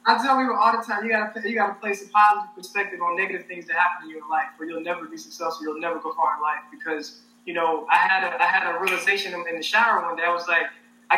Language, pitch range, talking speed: English, 180-235 Hz, 280 wpm